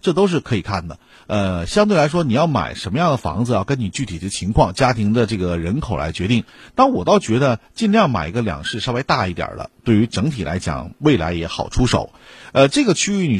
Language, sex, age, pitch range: Chinese, male, 50-69, 90-130 Hz